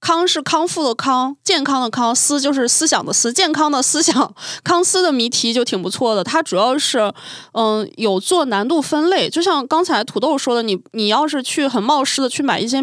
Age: 20-39